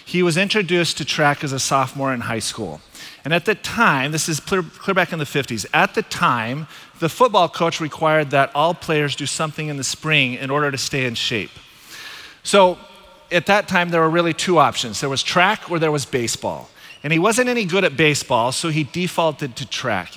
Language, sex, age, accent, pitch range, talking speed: English, male, 40-59, American, 135-175 Hz, 215 wpm